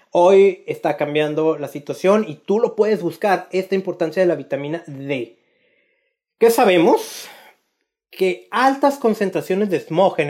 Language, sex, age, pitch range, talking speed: Spanish, male, 30-49, 165-220 Hz, 140 wpm